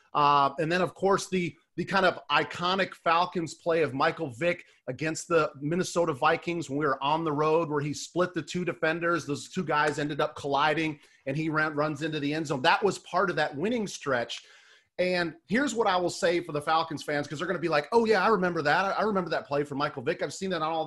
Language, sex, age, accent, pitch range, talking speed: English, male, 30-49, American, 150-185 Hz, 245 wpm